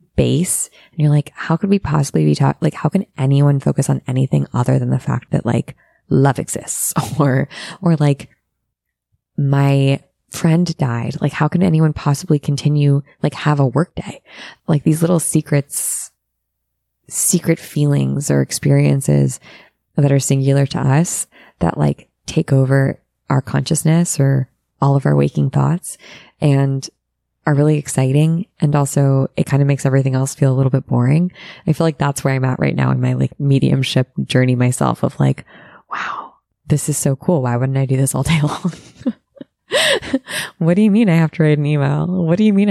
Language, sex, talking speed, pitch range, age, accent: English, female, 180 wpm, 130-155 Hz, 20-39, American